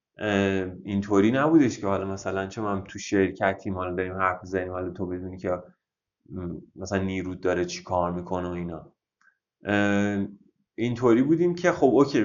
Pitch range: 100-135 Hz